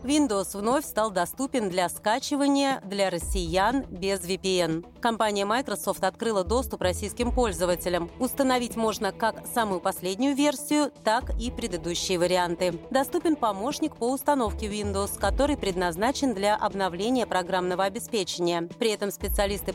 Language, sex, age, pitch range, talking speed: Russian, female, 30-49, 185-245 Hz, 120 wpm